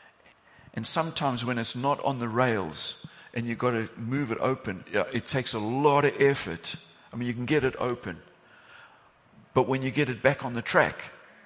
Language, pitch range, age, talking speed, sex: English, 110-140 Hz, 50-69, 195 wpm, male